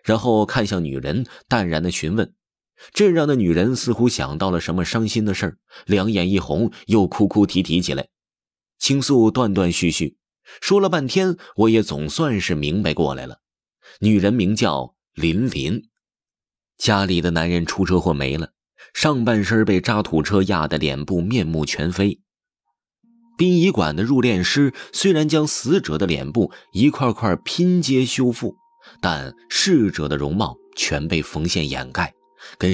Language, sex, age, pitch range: Chinese, male, 30-49, 90-150 Hz